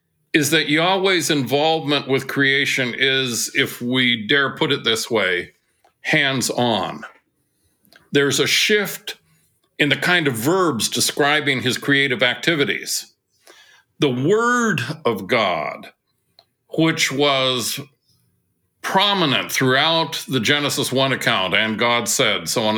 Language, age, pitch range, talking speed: English, 60-79, 125-155 Hz, 115 wpm